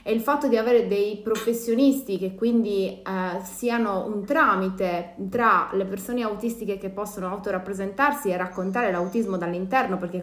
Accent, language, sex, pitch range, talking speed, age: native, Italian, female, 180-210 Hz, 140 wpm, 20-39